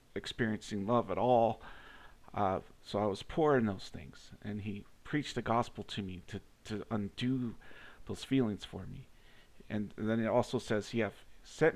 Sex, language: male, English